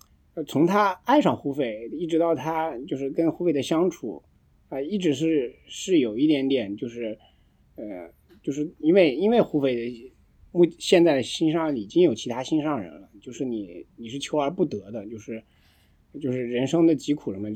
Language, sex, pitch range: Chinese, male, 115-165 Hz